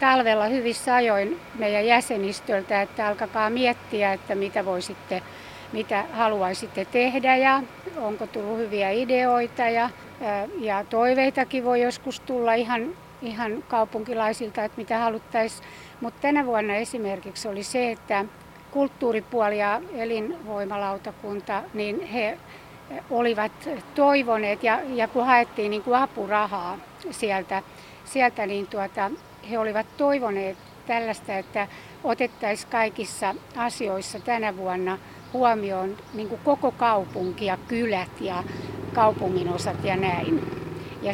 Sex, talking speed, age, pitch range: female, 110 wpm, 60-79, 200-240 Hz